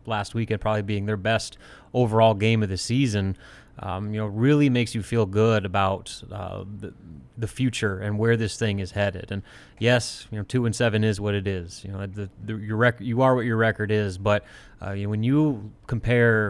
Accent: American